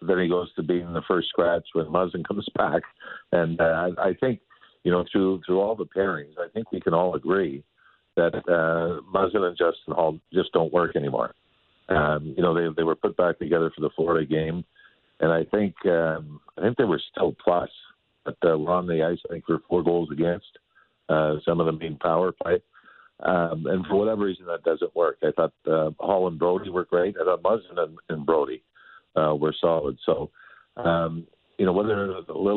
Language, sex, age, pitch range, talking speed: English, male, 50-69, 80-90 Hz, 210 wpm